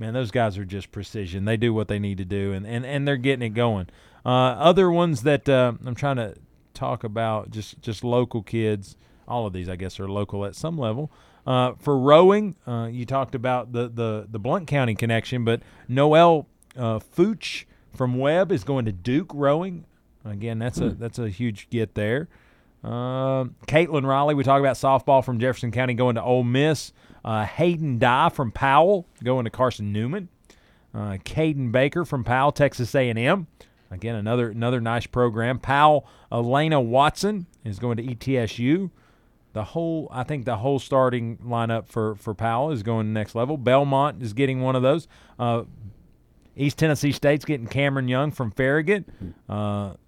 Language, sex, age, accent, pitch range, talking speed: English, male, 40-59, American, 115-145 Hz, 180 wpm